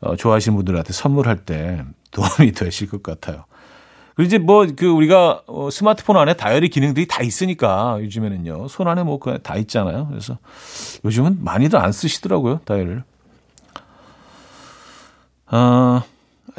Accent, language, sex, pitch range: native, Korean, male, 110-165 Hz